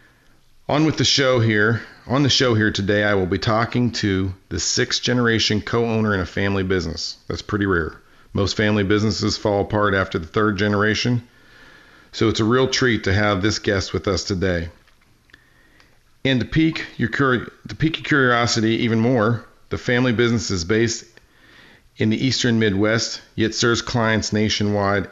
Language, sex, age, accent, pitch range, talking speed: English, male, 40-59, American, 100-120 Hz, 160 wpm